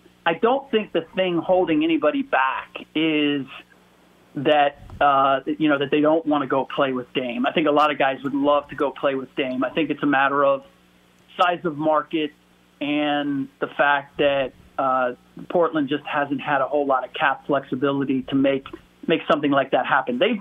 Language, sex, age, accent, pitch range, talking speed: English, male, 40-59, American, 135-165 Hz, 195 wpm